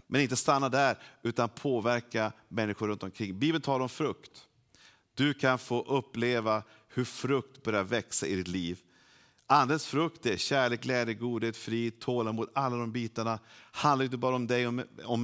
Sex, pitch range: male, 105-130 Hz